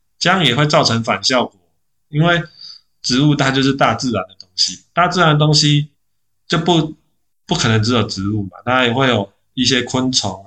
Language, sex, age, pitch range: Chinese, male, 20-39, 105-130 Hz